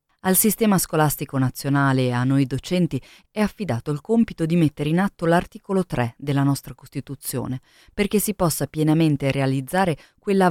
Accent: native